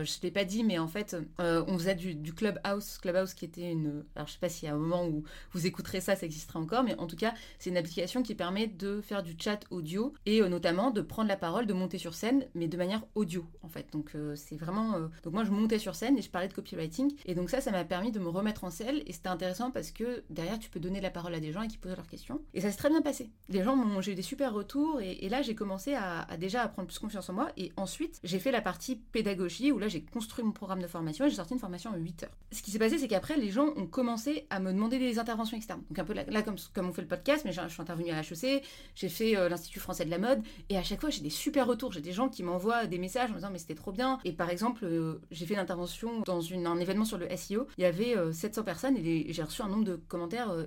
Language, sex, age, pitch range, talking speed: French, female, 30-49, 175-235 Hz, 295 wpm